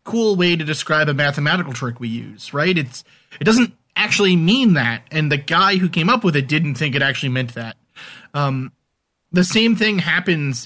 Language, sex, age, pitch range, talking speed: English, male, 30-49, 130-170 Hz, 195 wpm